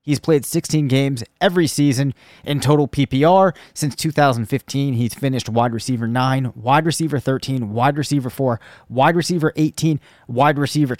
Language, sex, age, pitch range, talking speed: English, male, 30-49, 125-150 Hz, 145 wpm